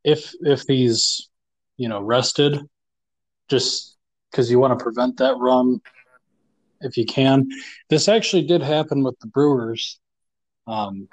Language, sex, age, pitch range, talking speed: English, male, 20-39, 115-140 Hz, 135 wpm